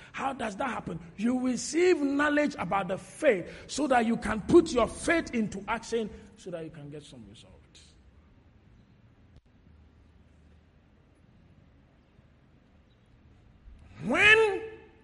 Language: English